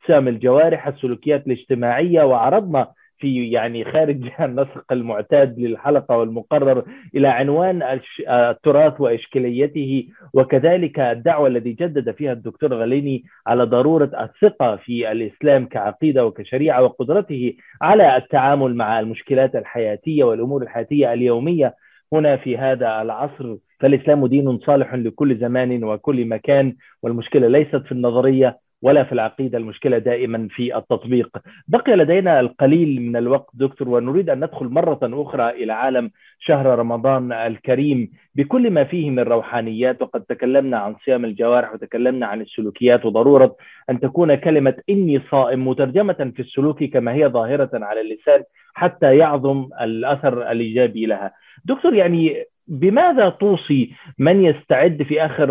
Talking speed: 125 wpm